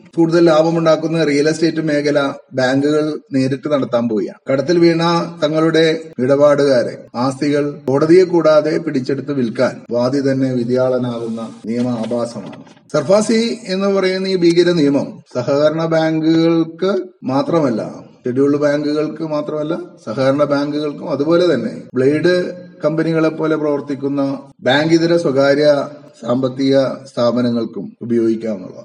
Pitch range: 135-165 Hz